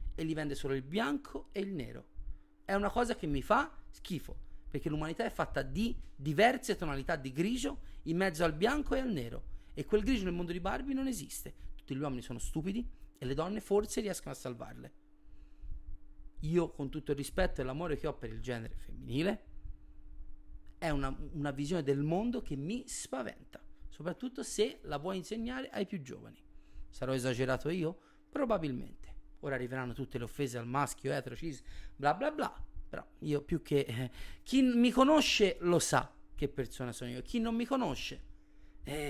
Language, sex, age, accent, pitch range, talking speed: Italian, male, 30-49, native, 125-185 Hz, 180 wpm